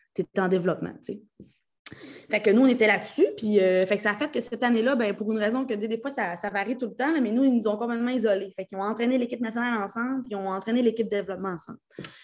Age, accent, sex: 20-39, Canadian, female